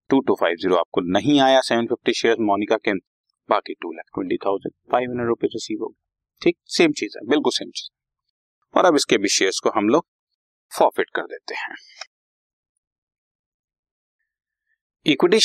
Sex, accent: male, native